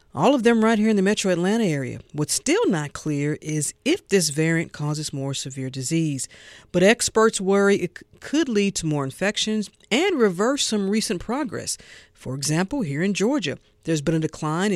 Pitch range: 145-195 Hz